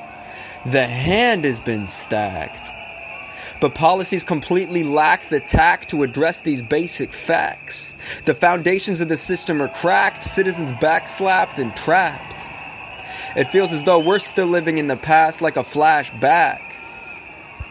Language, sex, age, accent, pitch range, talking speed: English, male, 20-39, American, 135-165 Hz, 135 wpm